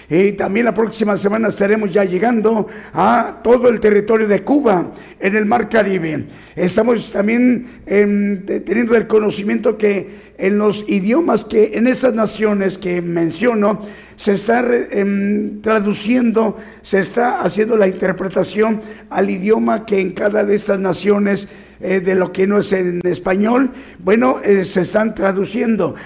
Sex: male